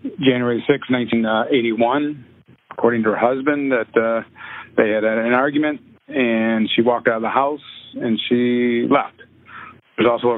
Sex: male